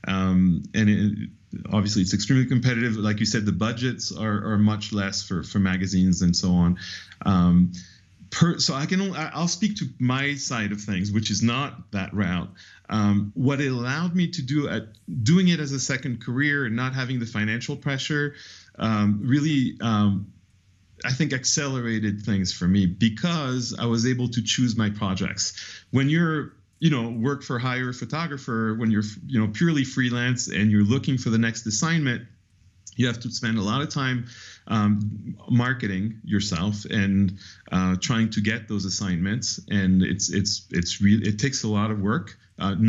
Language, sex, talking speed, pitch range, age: English, male, 175 wpm, 100-130 Hz, 40-59